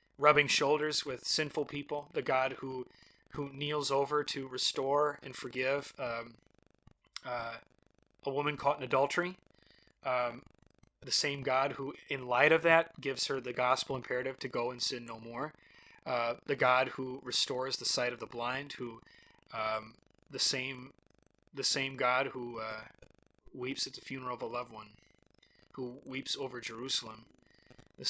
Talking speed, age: 160 wpm, 30-49